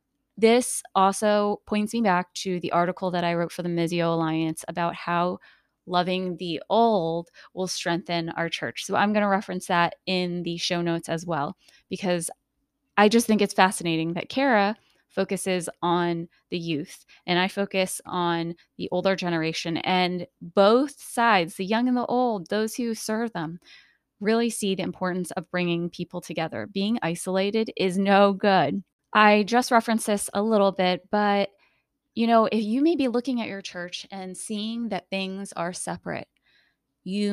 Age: 20-39